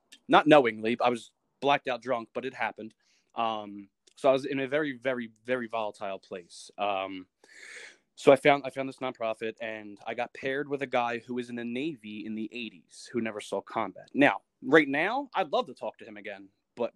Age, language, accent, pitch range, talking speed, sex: 20-39, English, American, 110-130 Hz, 210 wpm, male